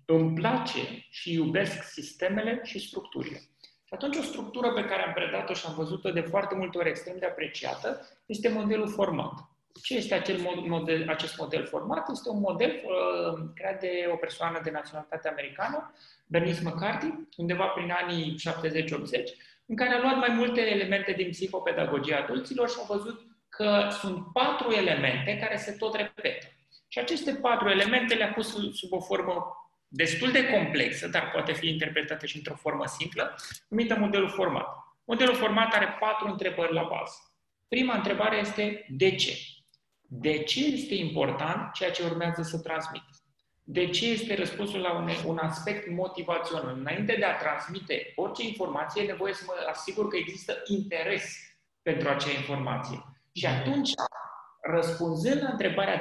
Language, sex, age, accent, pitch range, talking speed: Romanian, male, 30-49, native, 160-220 Hz, 160 wpm